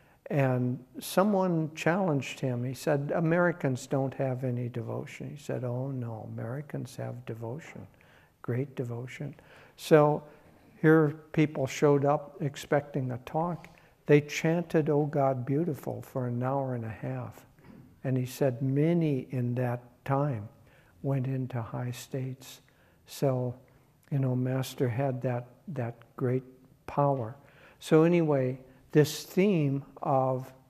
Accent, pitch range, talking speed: American, 130-150 Hz, 125 wpm